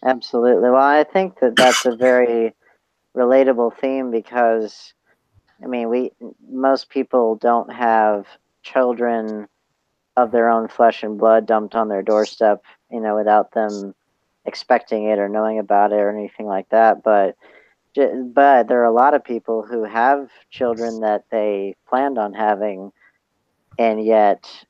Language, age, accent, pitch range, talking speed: English, 40-59, American, 105-120 Hz, 150 wpm